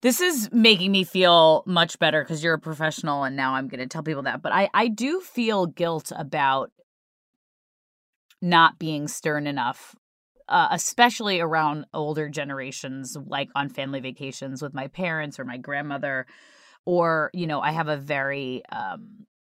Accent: American